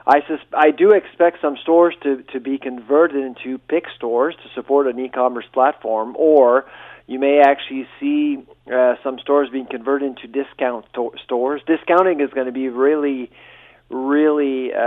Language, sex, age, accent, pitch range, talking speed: English, male, 40-59, American, 130-150 Hz, 155 wpm